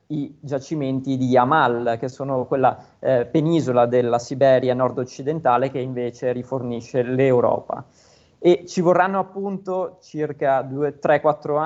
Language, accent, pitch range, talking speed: Italian, native, 130-160 Hz, 115 wpm